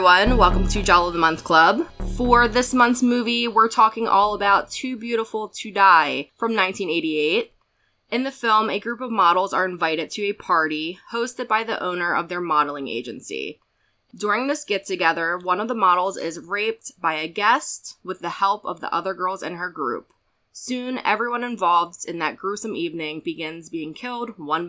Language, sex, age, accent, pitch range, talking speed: English, female, 20-39, American, 175-235 Hz, 180 wpm